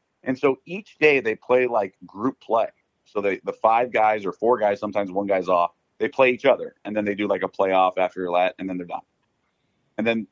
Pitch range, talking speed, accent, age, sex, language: 95-130 Hz, 235 wpm, American, 40-59, male, English